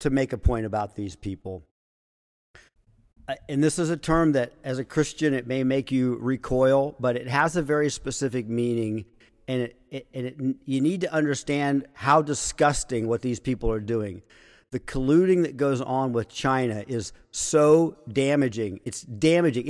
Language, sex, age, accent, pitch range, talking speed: English, male, 50-69, American, 115-145 Hz, 165 wpm